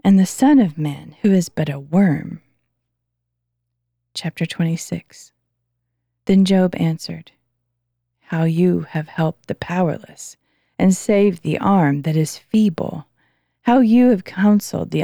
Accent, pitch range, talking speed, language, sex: American, 155-195 Hz, 130 wpm, English, female